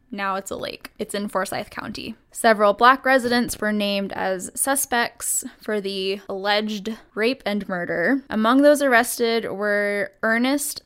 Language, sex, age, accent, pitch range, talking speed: English, female, 10-29, American, 195-235 Hz, 145 wpm